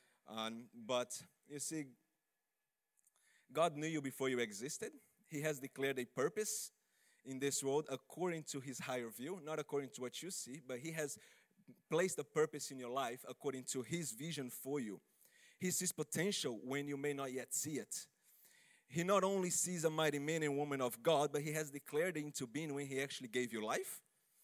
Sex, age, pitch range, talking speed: male, 30-49, 130-160 Hz, 190 wpm